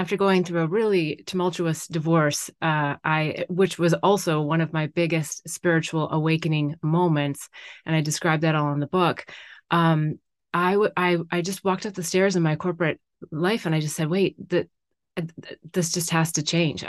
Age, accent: 30-49, American